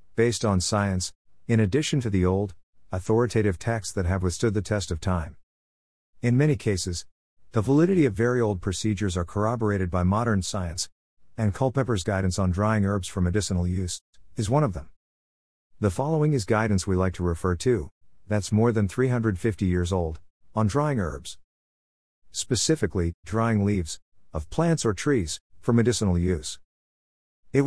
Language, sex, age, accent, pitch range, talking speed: English, male, 50-69, American, 90-115 Hz, 160 wpm